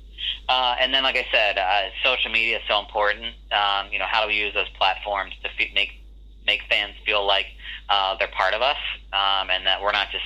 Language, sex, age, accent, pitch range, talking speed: Finnish, male, 30-49, American, 90-100 Hz, 230 wpm